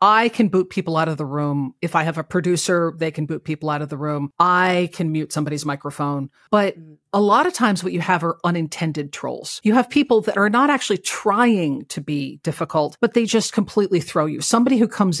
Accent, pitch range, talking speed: American, 155-220 Hz, 225 wpm